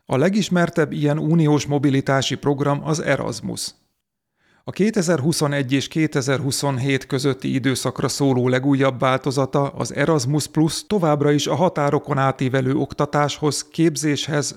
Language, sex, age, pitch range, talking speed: Hungarian, male, 40-59, 135-155 Hz, 110 wpm